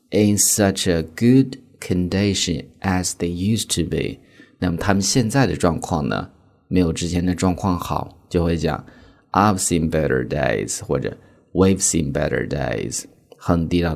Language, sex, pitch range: Chinese, male, 85-100 Hz